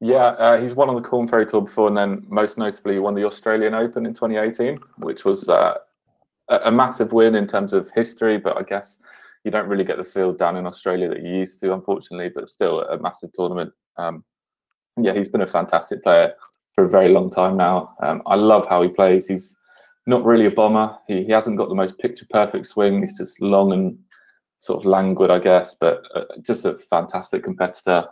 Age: 20-39